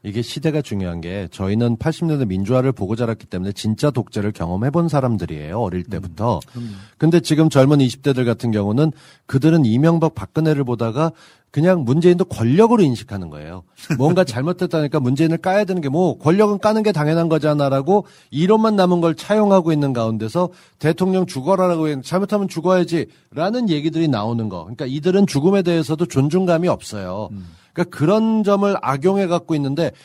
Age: 40-59